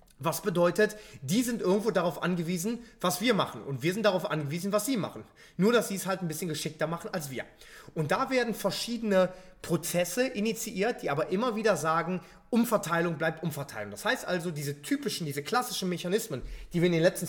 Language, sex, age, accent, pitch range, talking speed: German, male, 30-49, German, 160-205 Hz, 195 wpm